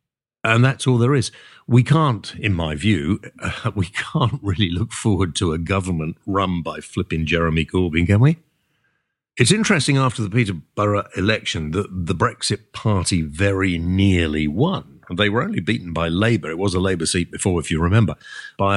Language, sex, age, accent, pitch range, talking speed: English, male, 50-69, British, 95-125 Hz, 175 wpm